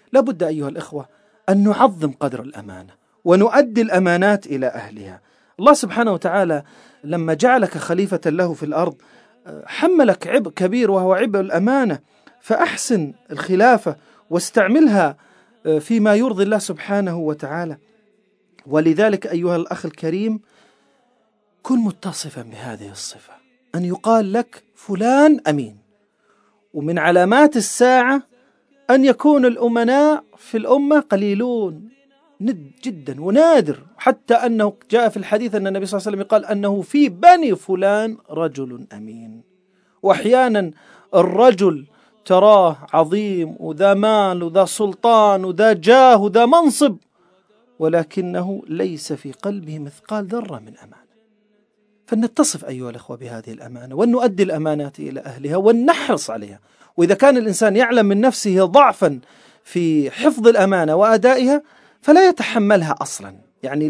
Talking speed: 115 wpm